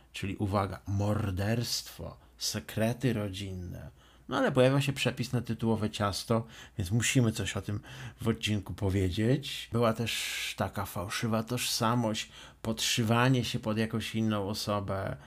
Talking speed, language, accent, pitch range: 125 wpm, Polish, native, 105-130 Hz